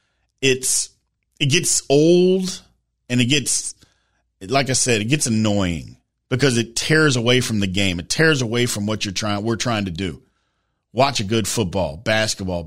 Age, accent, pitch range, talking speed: 40-59, American, 105-175 Hz, 170 wpm